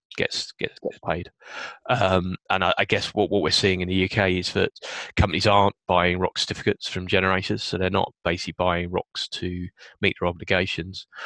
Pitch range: 90-95 Hz